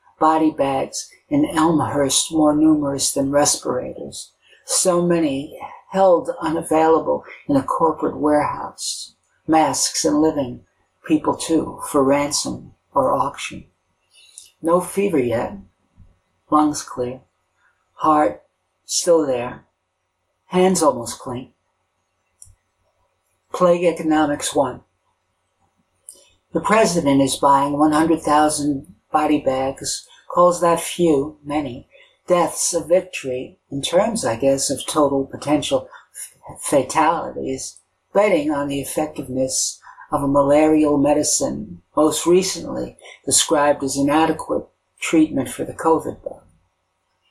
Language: English